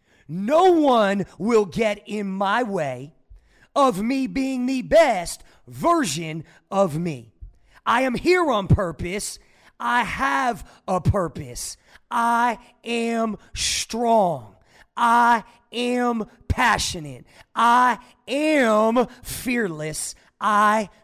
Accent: American